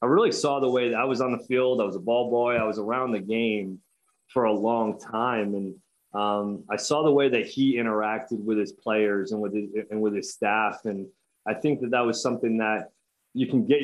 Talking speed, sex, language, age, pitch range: 235 wpm, male, English, 30-49, 110-130 Hz